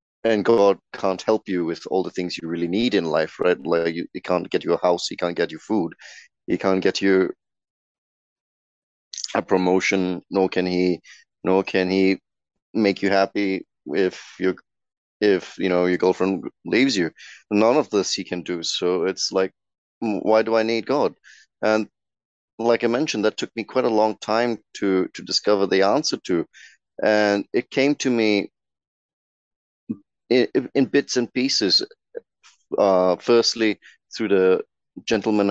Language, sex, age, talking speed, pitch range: English, male, 30-49, 165 wpm, 90-110 Hz